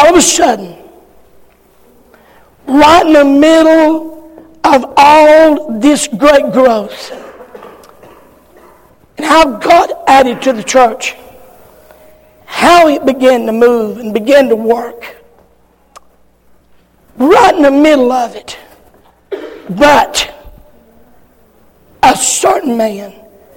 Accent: American